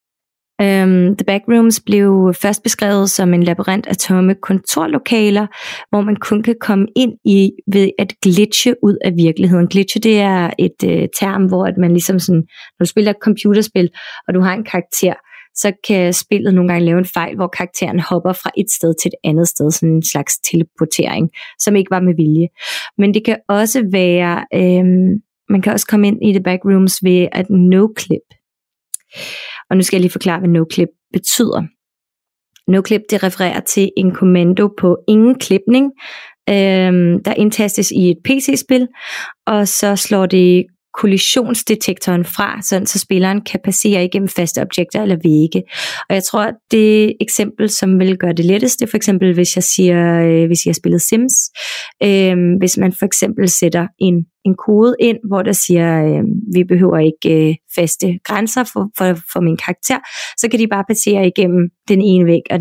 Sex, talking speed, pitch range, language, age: female, 175 wpm, 180-210 Hz, Danish, 30-49